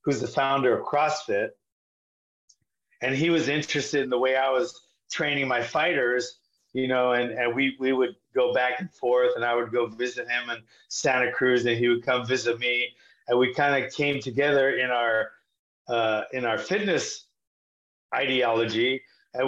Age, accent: 30-49, American